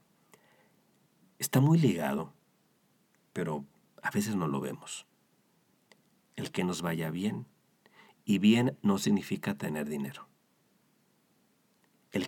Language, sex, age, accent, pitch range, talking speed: Spanish, male, 50-69, Mexican, 85-100 Hz, 105 wpm